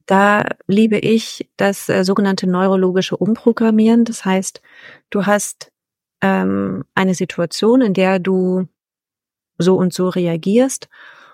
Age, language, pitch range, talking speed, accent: 30-49, German, 175-205 Hz, 115 wpm, German